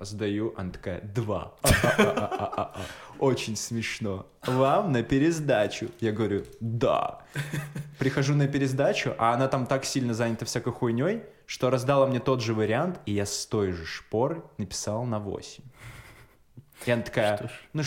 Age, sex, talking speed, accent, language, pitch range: 20-39, male, 140 wpm, native, Russian, 105-135 Hz